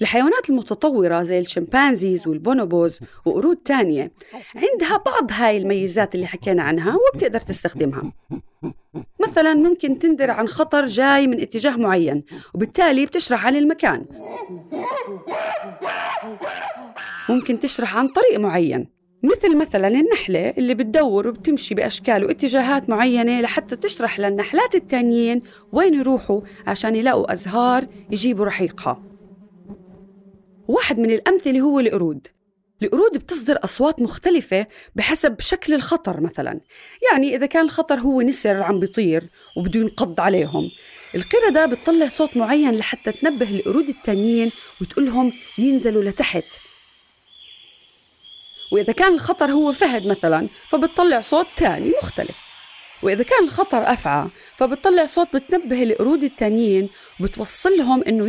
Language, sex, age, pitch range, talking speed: Arabic, female, 30-49, 200-310 Hz, 115 wpm